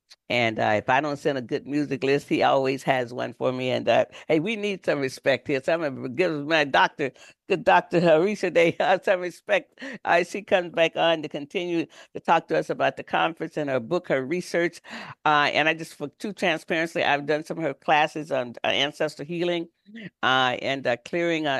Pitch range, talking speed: 130-170 Hz, 210 wpm